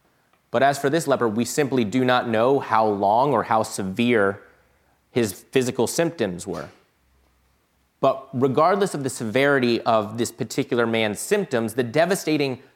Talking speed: 145 wpm